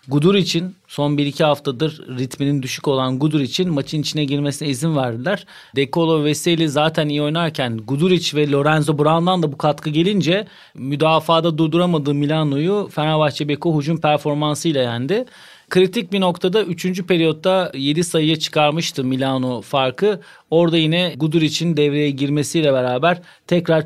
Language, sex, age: Turkish, male, 40-59